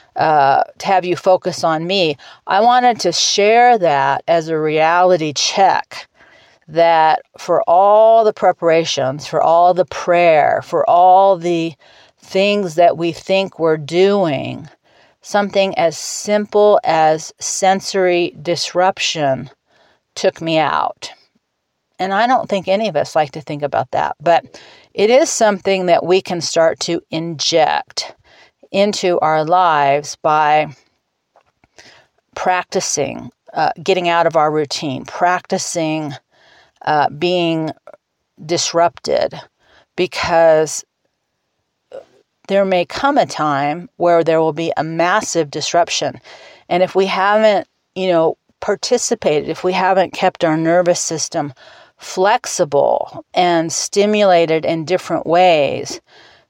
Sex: female